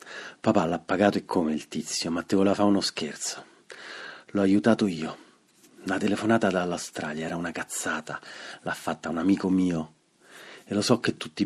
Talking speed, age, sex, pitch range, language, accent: 170 wpm, 40-59, male, 85-105 Hz, Italian, native